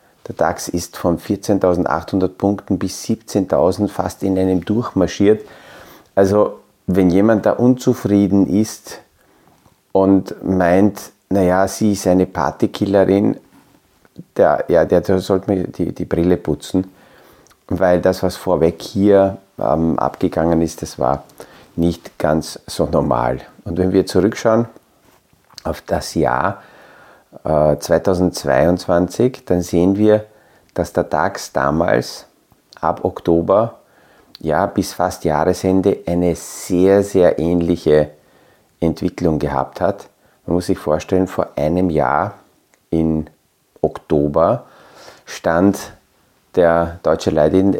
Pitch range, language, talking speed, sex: 85-95 Hz, German, 110 wpm, male